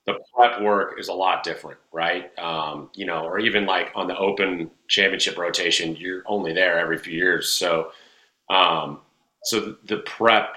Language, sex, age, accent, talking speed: English, male, 30-49, American, 170 wpm